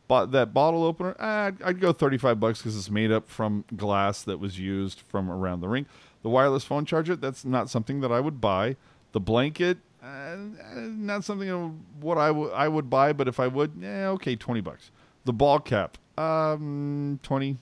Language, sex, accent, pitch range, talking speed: English, male, American, 115-150 Hz, 200 wpm